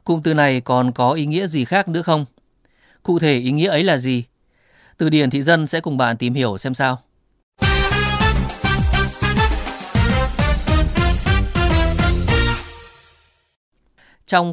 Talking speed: 125 wpm